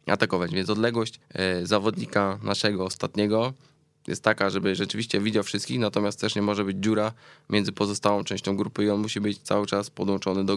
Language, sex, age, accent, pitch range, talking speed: Polish, male, 20-39, native, 95-105 Hz, 170 wpm